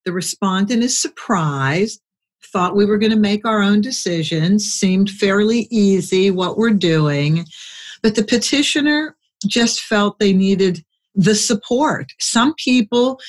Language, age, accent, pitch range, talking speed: English, 60-79, American, 170-220 Hz, 135 wpm